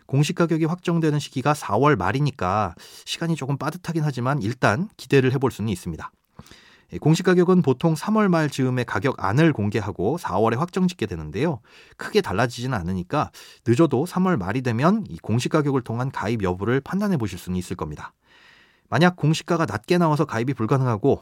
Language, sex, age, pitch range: Korean, male, 30-49, 110-165 Hz